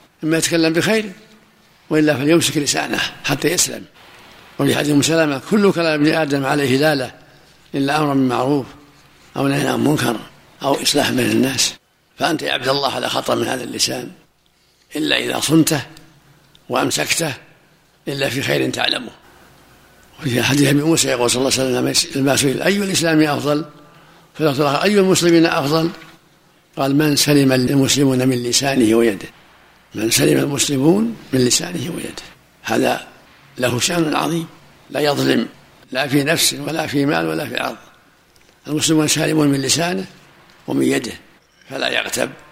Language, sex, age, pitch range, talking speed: Arabic, male, 60-79, 135-165 Hz, 140 wpm